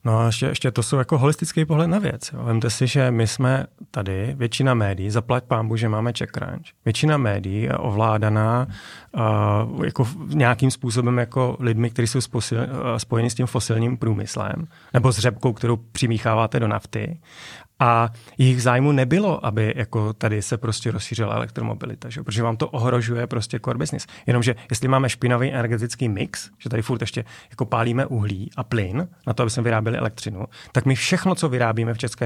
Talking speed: 180 wpm